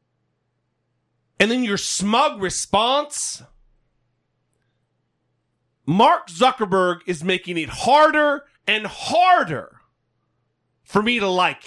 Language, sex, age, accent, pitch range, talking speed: English, male, 40-59, American, 160-255 Hz, 85 wpm